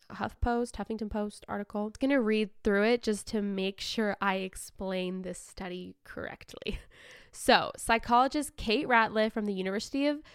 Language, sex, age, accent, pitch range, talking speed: English, female, 10-29, American, 195-245 Hz, 160 wpm